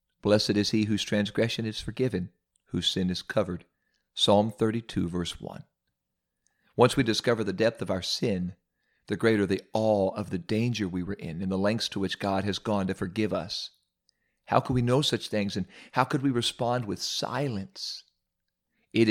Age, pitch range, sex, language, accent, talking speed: 40-59, 95-120 Hz, male, English, American, 180 wpm